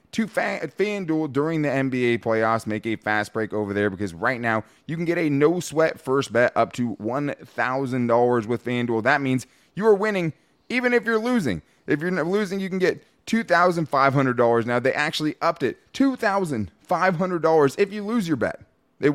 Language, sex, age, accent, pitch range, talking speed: English, male, 20-39, American, 110-155 Hz, 170 wpm